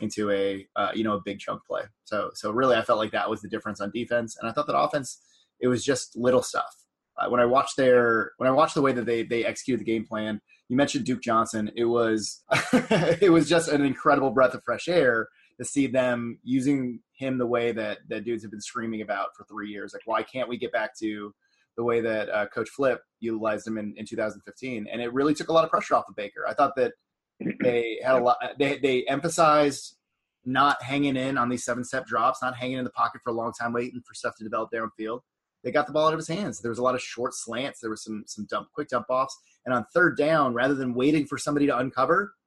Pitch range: 115-135 Hz